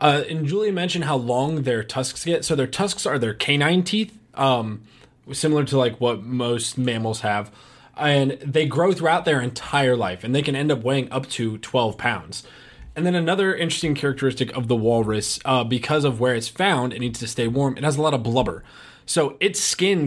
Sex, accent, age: male, American, 20-39